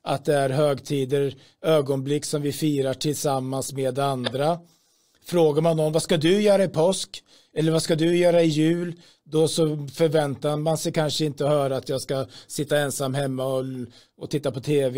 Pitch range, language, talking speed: 135-155 Hz, Swedish, 185 wpm